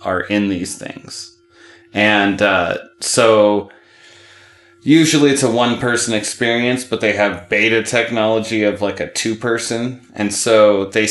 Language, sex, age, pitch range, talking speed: English, male, 20-39, 95-115 Hz, 130 wpm